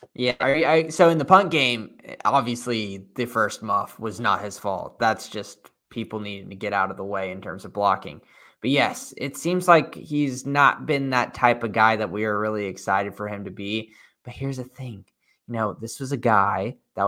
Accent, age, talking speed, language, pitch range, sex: American, 20-39, 220 wpm, English, 105-130 Hz, male